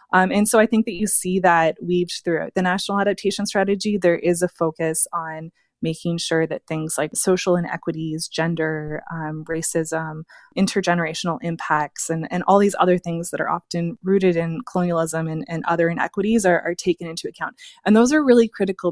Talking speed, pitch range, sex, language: 185 wpm, 165-195 Hz, female, English